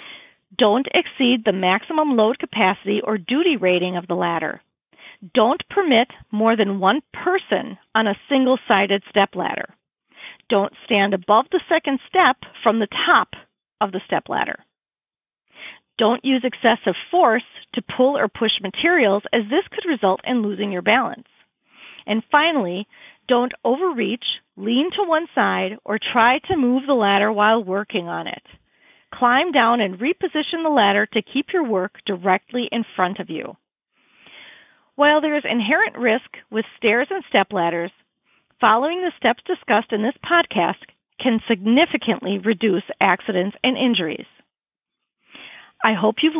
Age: 40-59